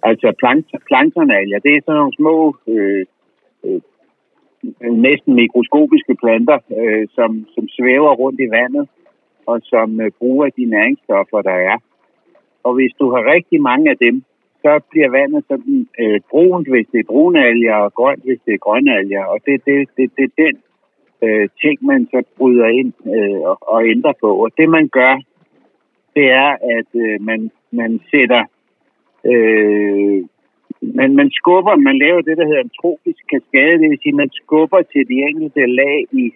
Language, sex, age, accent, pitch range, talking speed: Danish, male, 60-79, native, 115-185 Hz, 155 wpm